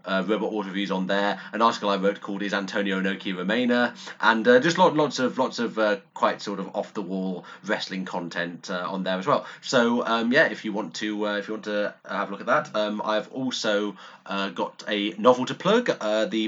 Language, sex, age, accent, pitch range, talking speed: English, male, 30-49, British, 95-110 Hz, 235 wpm